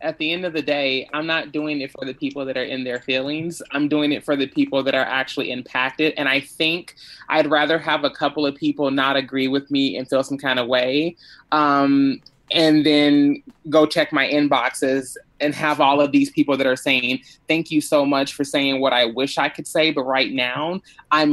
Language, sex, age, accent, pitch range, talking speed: English, male, 20-39, American, 140-190 Hz, 225 wpm